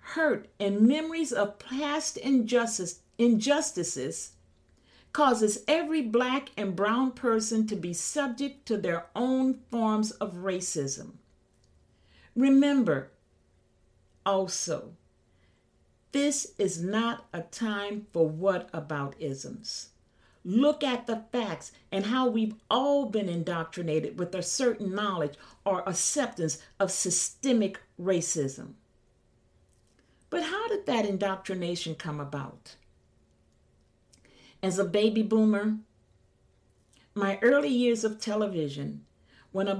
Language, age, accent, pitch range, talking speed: English, 50-69, American, 165-235 Hz, 105 wpm